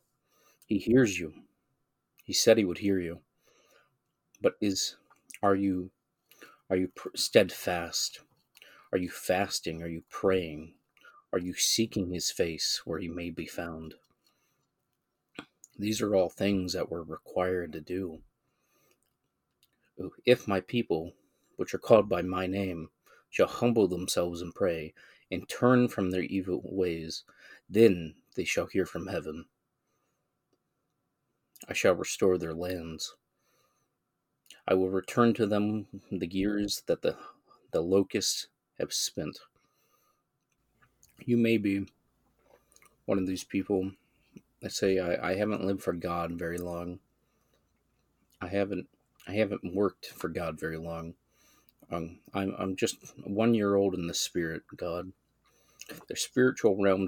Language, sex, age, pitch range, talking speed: English, male, 30-49, 85-100 Hz, 135 wpm